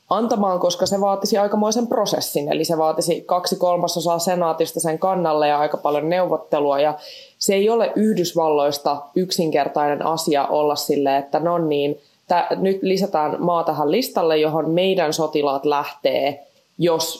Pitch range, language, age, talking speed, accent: 150-180 Hz, Finnish, 20-39, 140 wpm, native